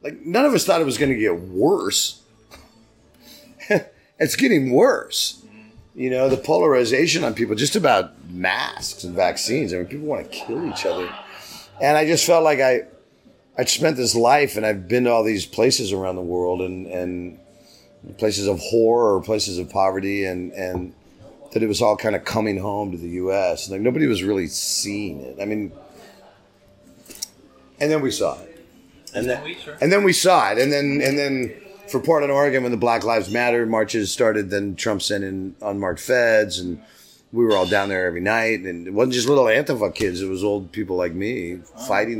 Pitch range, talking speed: 90-120 Hz, 195 wpm